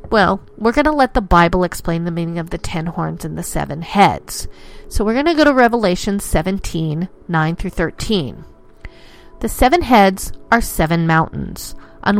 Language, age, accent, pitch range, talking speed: English, 40-59, American, 175-235 Hz, 175 wpm